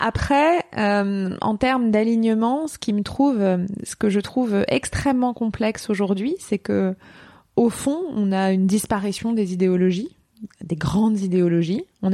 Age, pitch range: 20-39, 185-235 Hz